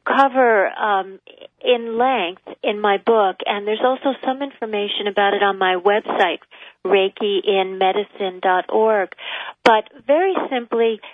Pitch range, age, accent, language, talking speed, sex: 205-260 Hz, 40-59, American, English, 115 wpm, female